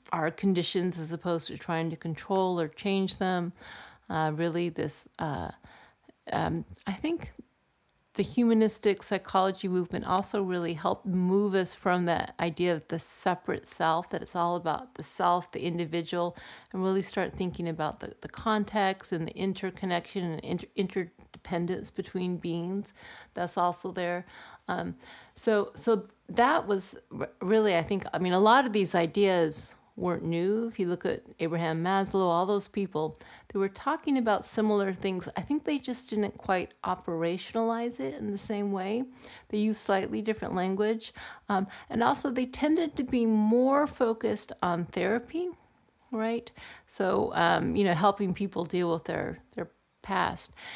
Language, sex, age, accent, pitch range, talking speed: English, female, 40-59, American, 175-215 Hz, 155 wpm